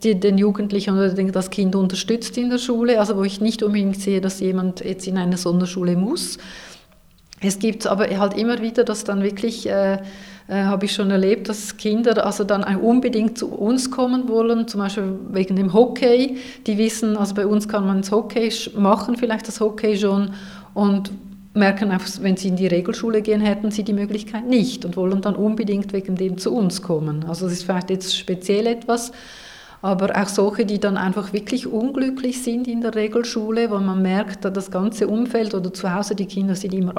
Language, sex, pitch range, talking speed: German, female, 190-220 Hz, 195 wpm